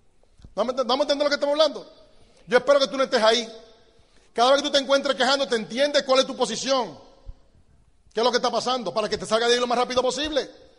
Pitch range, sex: 245-285 Hz, male